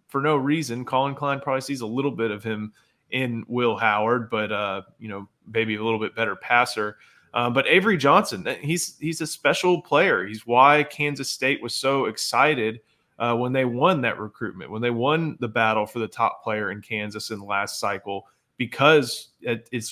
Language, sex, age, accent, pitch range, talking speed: English, male, 20-39, American, 115-145 Hz, 195 wpm